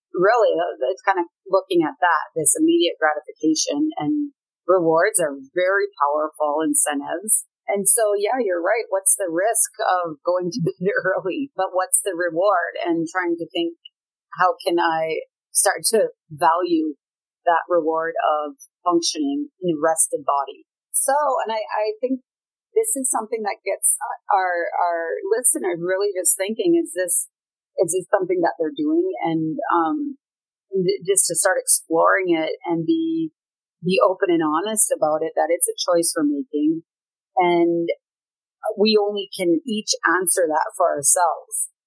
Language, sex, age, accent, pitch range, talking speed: English, female, 30-49, American, 160-265 Hz, 150 wpm